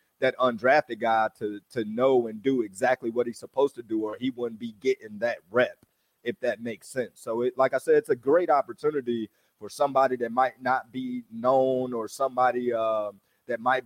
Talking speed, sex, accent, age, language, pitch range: 200 wpm, male, American, 30-49, English, 115-140 Hz